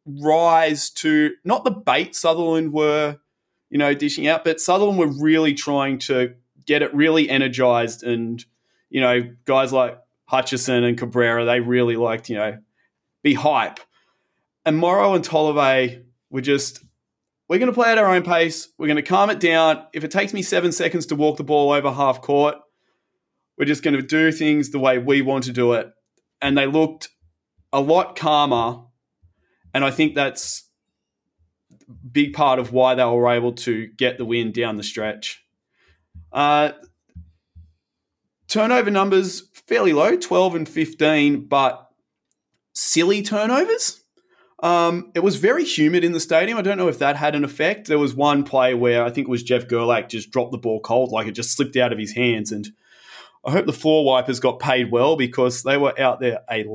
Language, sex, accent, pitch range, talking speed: English, male, Australian, 120-160 Hz, 185 wpm